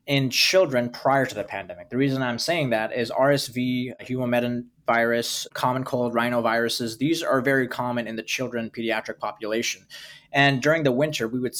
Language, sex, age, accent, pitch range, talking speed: English, male, 20-39, American, 115-135 Hz, 170 wpm